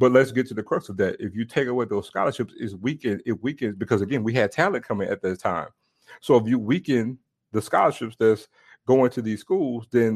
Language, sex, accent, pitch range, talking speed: English, male, American, 110-140 Hz, 230 wpm